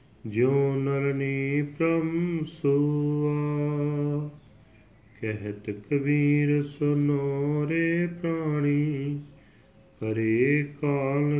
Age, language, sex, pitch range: 40-59, Punjabi, male, 110-145 Hz